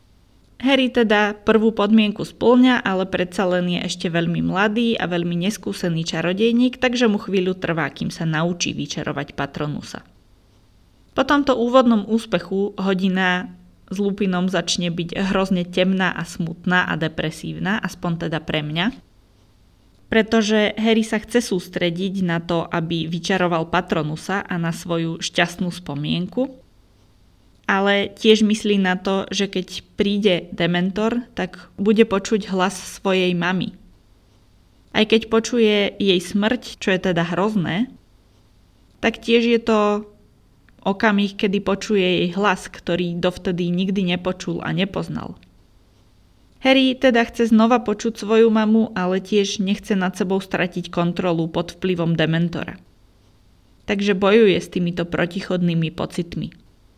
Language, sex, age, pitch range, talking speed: Slovak, female, 20-39, 165-210 Hz, 125 wpm